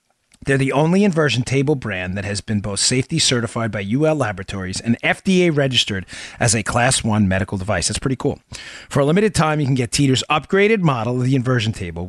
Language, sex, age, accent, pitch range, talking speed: English, male, 40-59, American, 105-150 Hz, 205 wpm